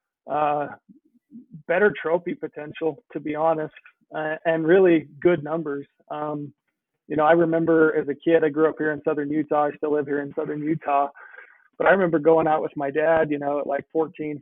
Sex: male